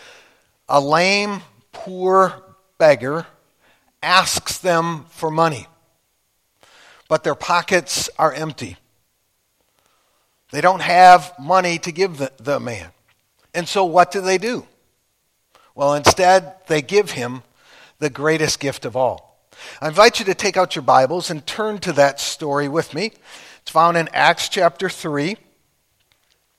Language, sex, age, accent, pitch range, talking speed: English, male, 60-79, American, 150-185 Hz, 135 wpm